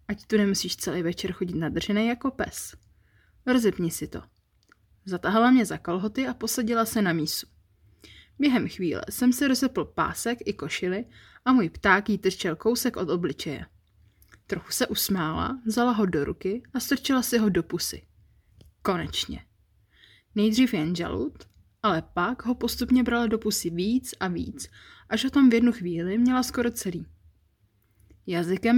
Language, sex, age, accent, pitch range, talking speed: Czech, female, 20-39, native, 155-230 Hz, 155 wpm